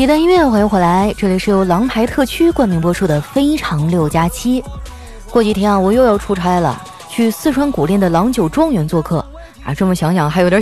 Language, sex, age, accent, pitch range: Chinese, female, 20-39, native, 185-260 Hz